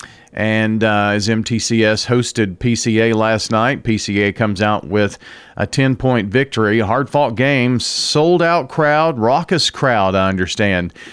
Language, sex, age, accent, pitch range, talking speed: English, male, 40-59, American, 105-125 Hz, 130 wpm